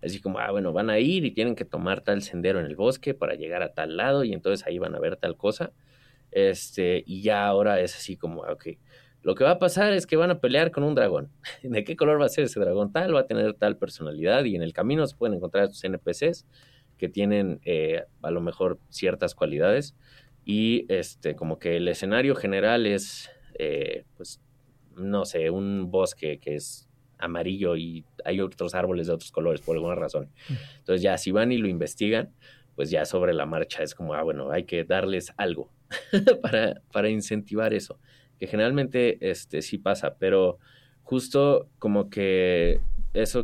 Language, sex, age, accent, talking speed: Spanish, male, 30-49, Mexican, 195 wpm